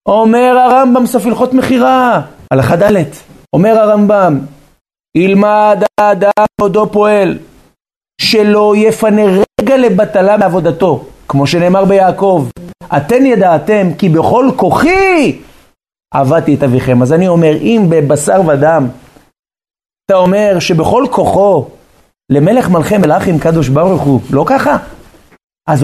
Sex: male